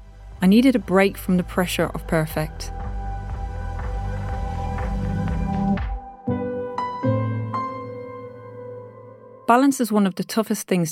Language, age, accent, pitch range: English, 30-49, British, 160-205 Hz